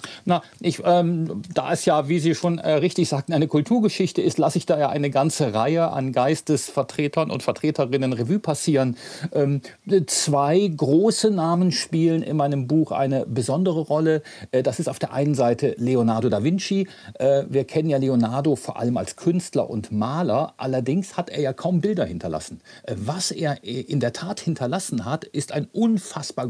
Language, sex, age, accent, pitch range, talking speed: German, male, 40-59, German, 130-170 Hz, 175 wpm